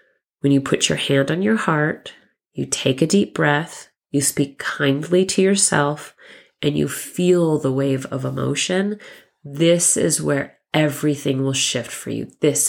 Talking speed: 160 wpm